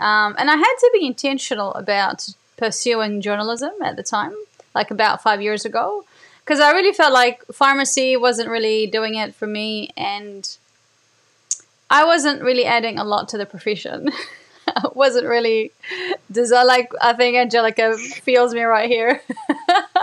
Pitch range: 215-285 Hz